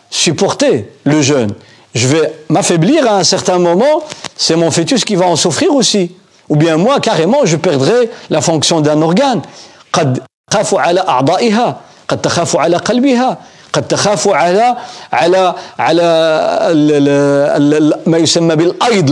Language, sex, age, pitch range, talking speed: French, male, 50-69, 145-200 Hz, 90 wpm